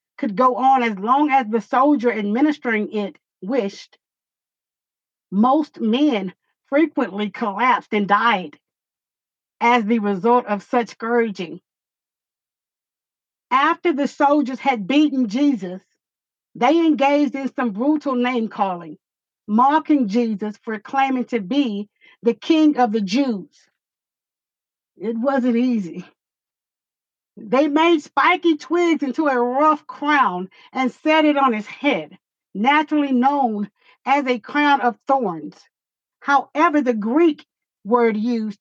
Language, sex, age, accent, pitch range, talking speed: English, female, 50-69, American, 225-290 Hz, 120 wpm